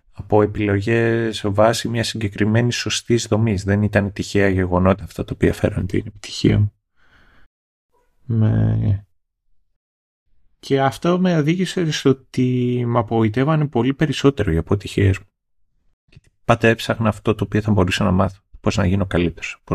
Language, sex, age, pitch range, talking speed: Greek, male, 30-49, 95-120 Hz, 135 wpm